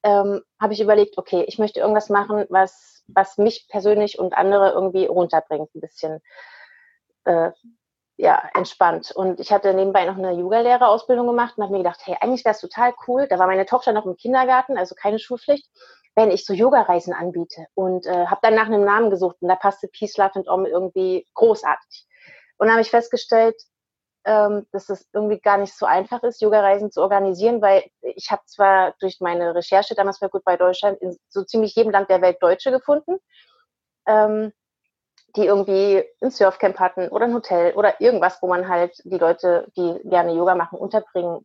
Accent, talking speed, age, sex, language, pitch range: German, 185 wpm, 30-49, female, German, 185-220 Hz